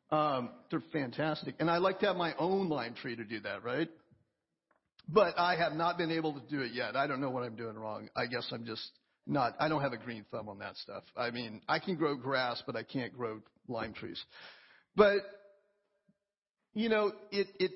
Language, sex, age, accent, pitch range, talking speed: English, male, 50-69, American, 145-200 Hz, 215 wpm